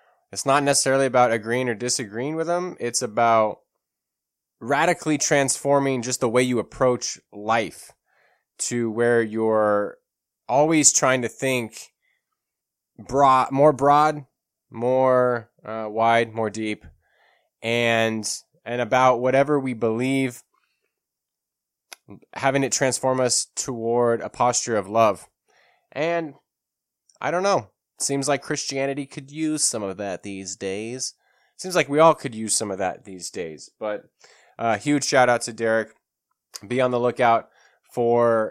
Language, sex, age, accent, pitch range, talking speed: English, male, 20-39, American, 110-135 Hz, 135 wpm